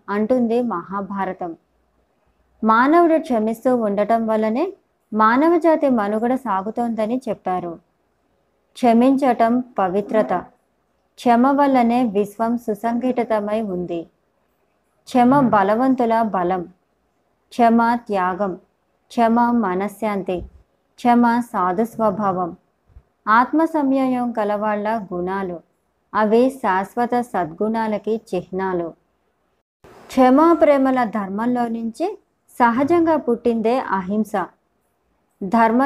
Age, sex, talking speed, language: 20-39, male, 65 wpm, Telugu